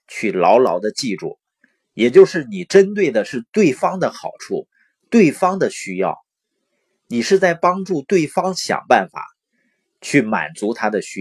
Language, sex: Chinese, male